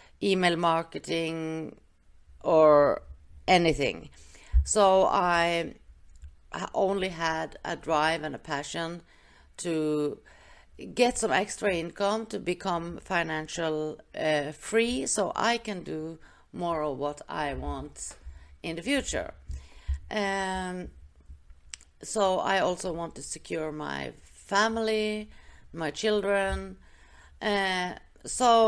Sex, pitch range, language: female, 155-200 Hz, English